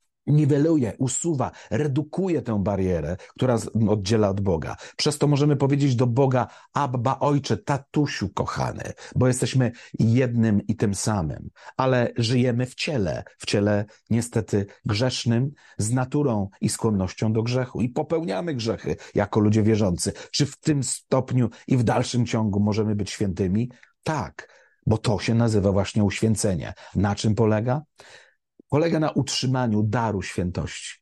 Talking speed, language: 135 wpm, Polish